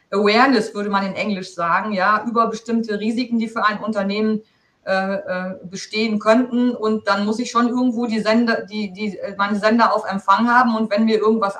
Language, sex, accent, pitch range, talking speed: German, female, German, 200-230 Hz, 185 wpm